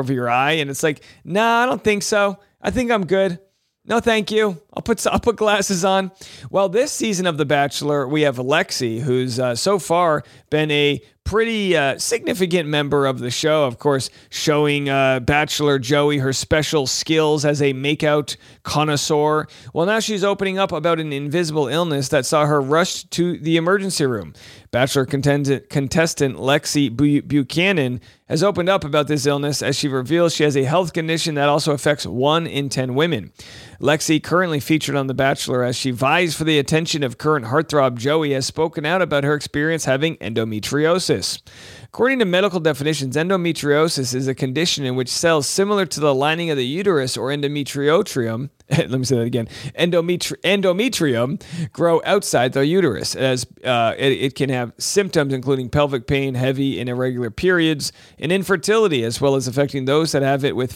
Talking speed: 180 wpm